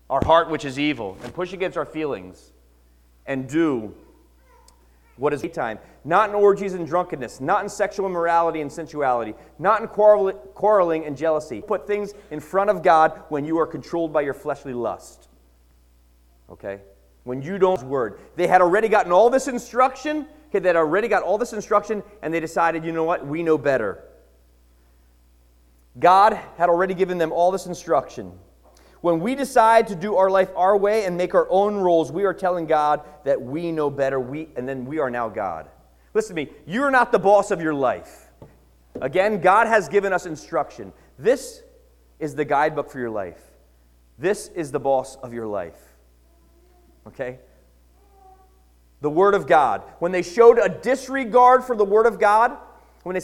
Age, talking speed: 30-49, 180 wpm